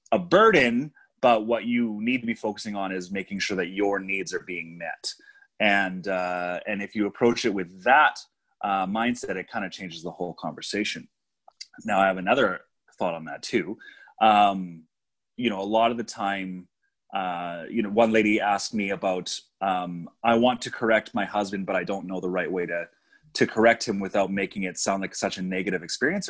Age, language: 30-49, English